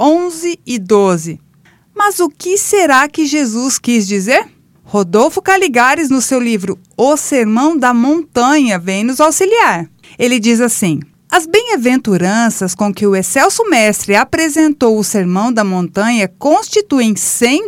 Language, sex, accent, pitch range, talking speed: Portuguese, female, Brazilian, 205-300 Hz, 135 wpm